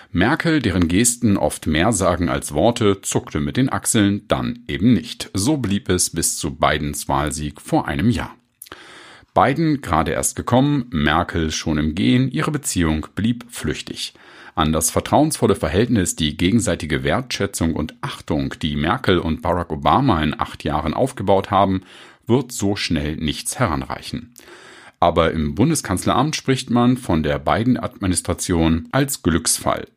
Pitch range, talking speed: 80-115 Hz, 140 wpm